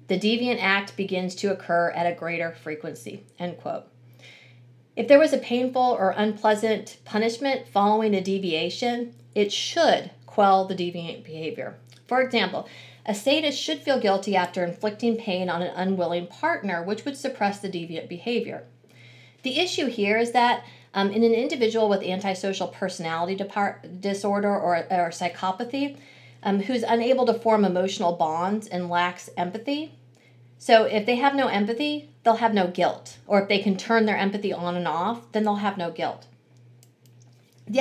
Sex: female